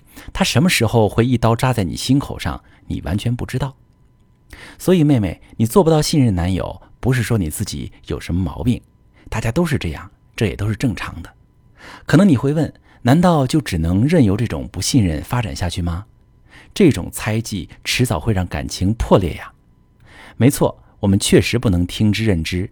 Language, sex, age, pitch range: Chinese, male, 50-69, 90-130 Hz